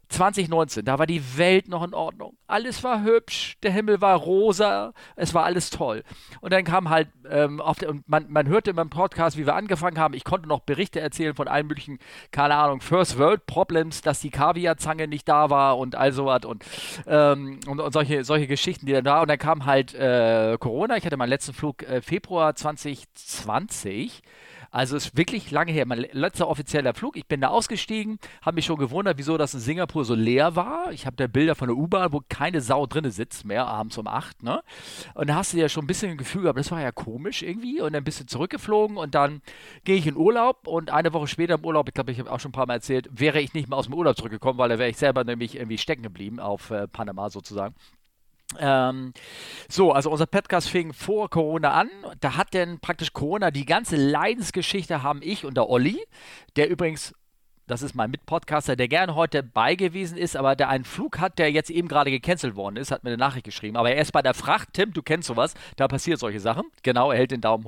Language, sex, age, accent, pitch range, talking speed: German, male, 40-59, German, 135-170 Hz, 230 wpm